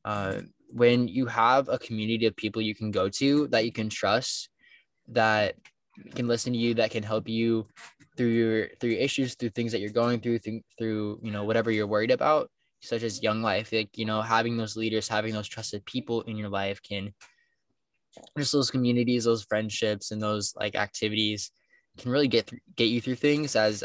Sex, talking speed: male, 200 wpm